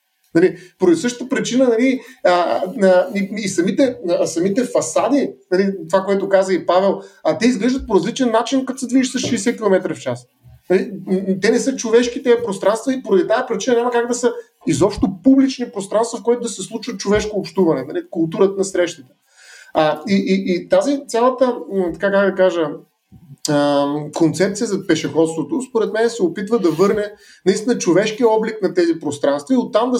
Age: 30-49